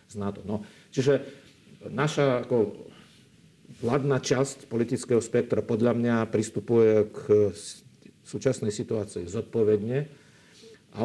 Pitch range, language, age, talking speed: 105-125 Hz, Slovak, 50-69, 100 wpm